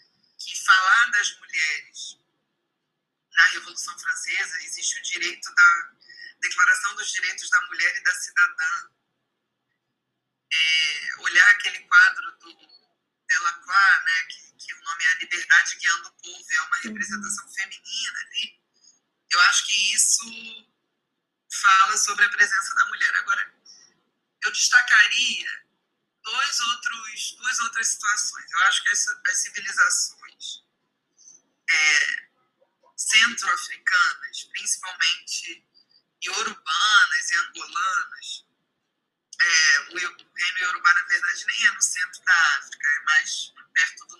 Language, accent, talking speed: Portuguese, Brazilian, 115 wpm